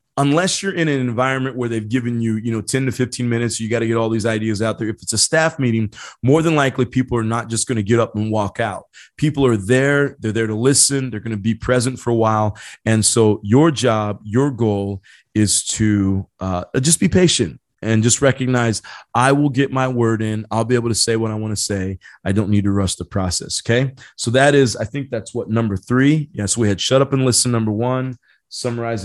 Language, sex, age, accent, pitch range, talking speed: English, male, 30-49, American, 110-135 Hz, 240 wpm